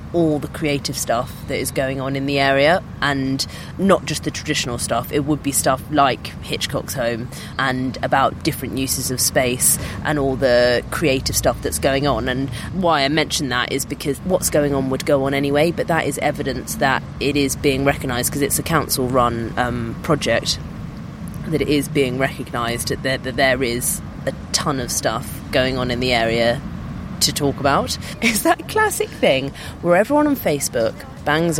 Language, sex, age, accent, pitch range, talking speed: English, female, 30-49, British, 130-180 Hz, 180 wpm